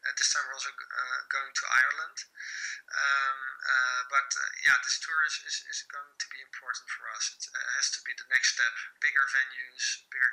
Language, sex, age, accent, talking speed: English, male, 20-39, Dutch, 205 wpm